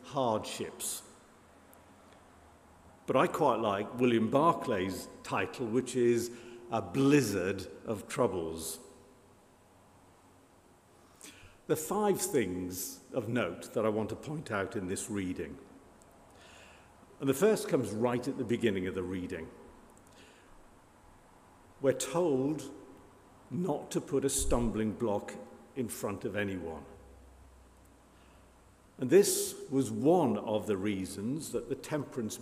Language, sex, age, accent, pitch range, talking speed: English, male, 60-79, British, 95-135 Hz, 115 wpm